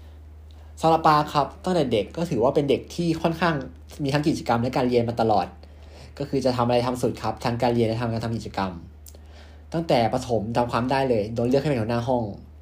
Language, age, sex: Thai, 20-39, male